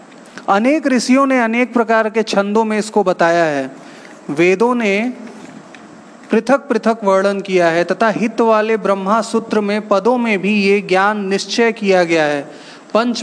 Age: 30-49